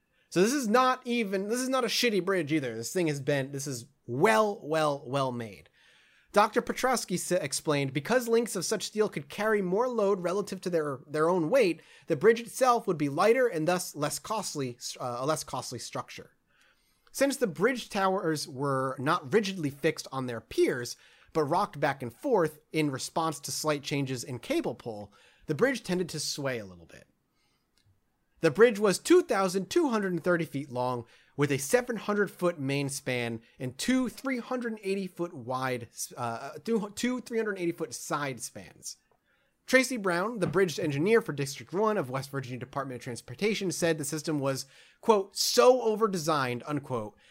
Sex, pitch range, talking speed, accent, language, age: male, 135-215 Hz, 165 wpm, American, English, 30-49